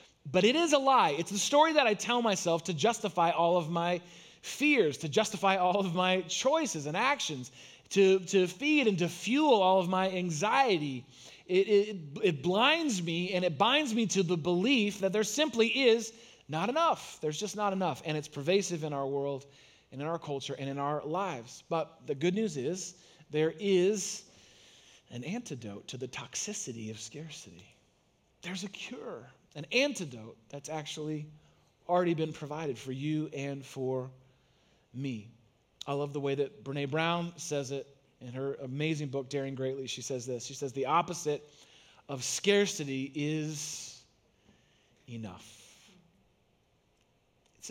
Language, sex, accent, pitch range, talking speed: English, male, American, 140-205 Hz, 160 wpm